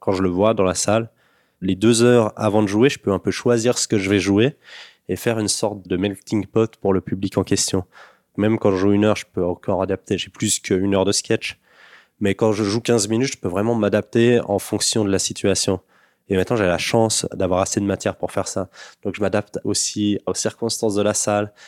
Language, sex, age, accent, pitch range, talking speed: French, male, 20-39, French, 100-110 Hz, 240 wpm